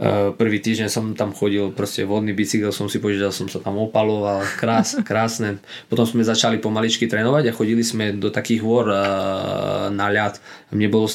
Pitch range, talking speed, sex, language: 100-115 Hz, 190 wpm, male, Slovak